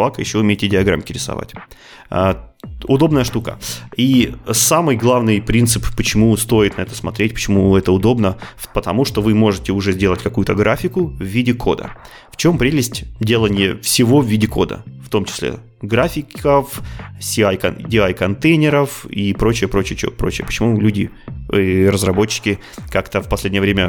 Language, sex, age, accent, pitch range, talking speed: Russian, male, 20-39, native, 100-125 Hz, 145 wpm